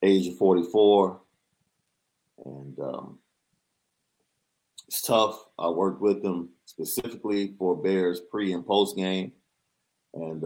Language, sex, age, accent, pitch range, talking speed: English, male, 40-59, American, 90-100 Hz, 110 wpm